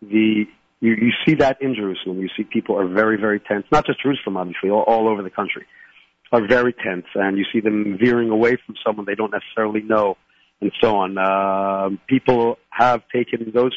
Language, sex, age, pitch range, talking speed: English, male, 50-69, 110-140 Hz, 200 wpm